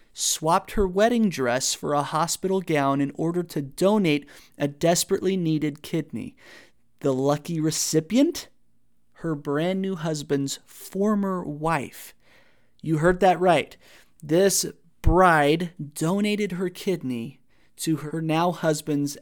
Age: 30-49